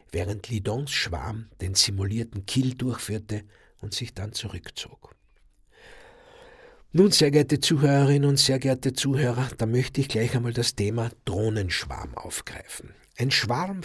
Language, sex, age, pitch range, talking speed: German, male, 60-79, 110-140 Hz, 130 wpm